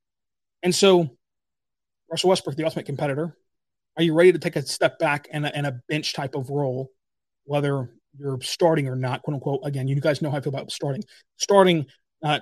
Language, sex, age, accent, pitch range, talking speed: English, male, 30-49, American, 140-165 Hz, 185 wpm